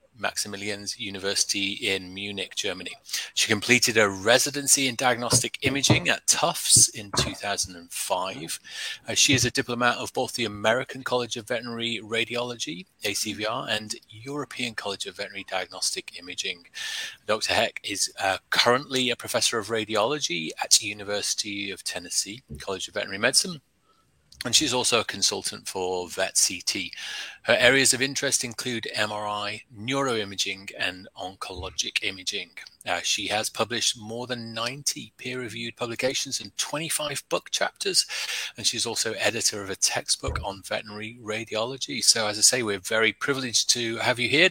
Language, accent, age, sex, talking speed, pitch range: English, British, 30-49, male, 145 wpm, 105-125 Hz